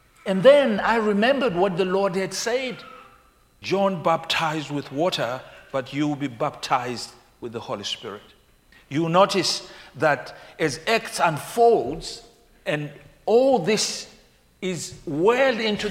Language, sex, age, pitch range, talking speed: English, male, 60-79, 165-220 Hz, 130 wpm